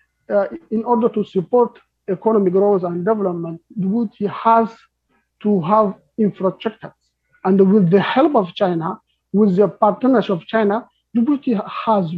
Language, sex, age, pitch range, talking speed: English, male, 50-69, 190-230 Hz, 135 wpm